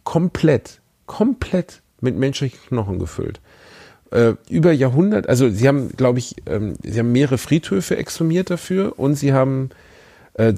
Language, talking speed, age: German, 140 wpm, 40-59